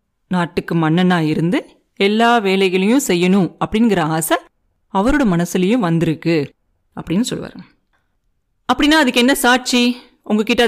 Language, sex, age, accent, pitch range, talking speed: Tamil, female, 30-49, native, 180-245 Hz, 100 wpm